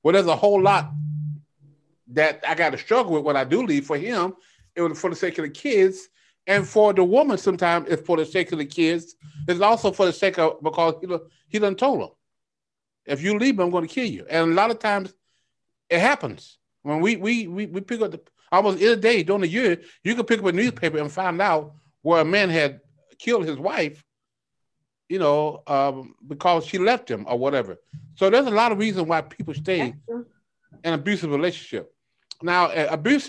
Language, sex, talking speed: English, male, 210 wpm